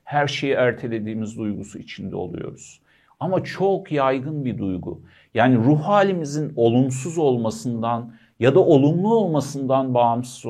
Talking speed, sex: 120 wpm, male